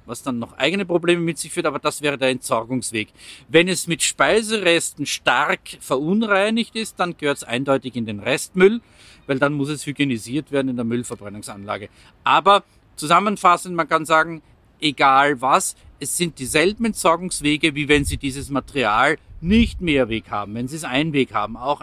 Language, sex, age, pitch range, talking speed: German, male, 50-69, 135-185 Hz, 170 wpm